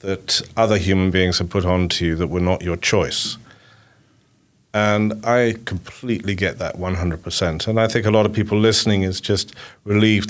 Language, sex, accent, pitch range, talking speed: English, male, British, 95-115 Hz, 180 wpm